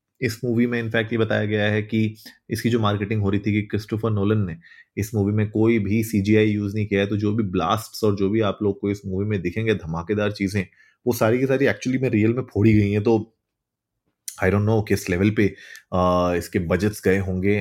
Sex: male